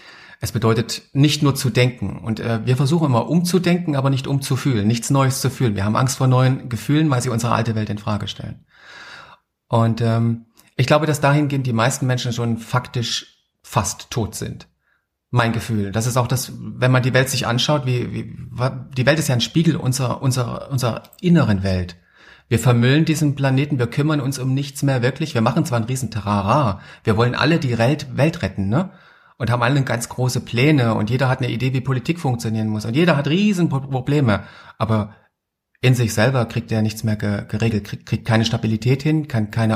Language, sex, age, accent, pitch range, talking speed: German, male, 40-59, German, 115-140 Hz, 200 wpm